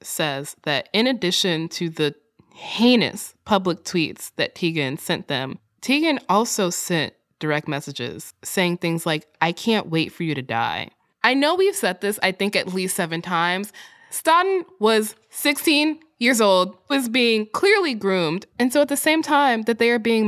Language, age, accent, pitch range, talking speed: English, 20-39, American, 150-245 Hz, 170 wpm